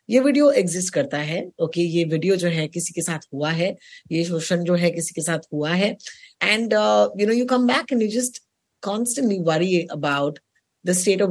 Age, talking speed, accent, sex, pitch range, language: 20-39, 165 wpm, native, female, 170-230 Hz, Hindi